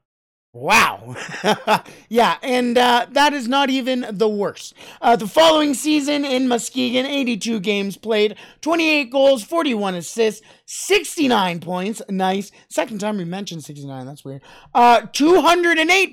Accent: American